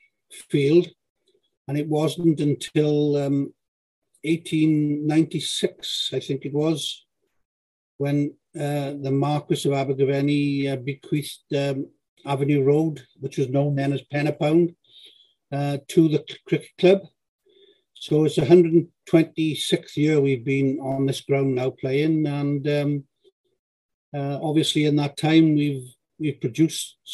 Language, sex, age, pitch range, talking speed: English, male, 60-79, 140-155 Hz, 120 wpm